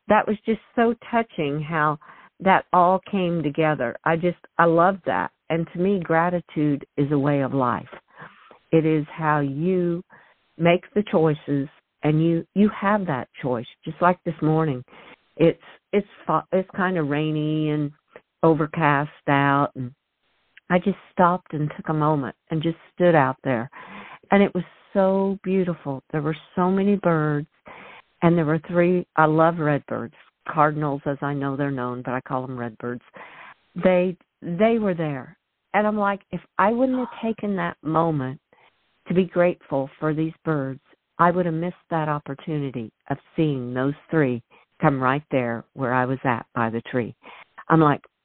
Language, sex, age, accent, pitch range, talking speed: English, female, 50-69, American, 145-185 Hz, 165 wpm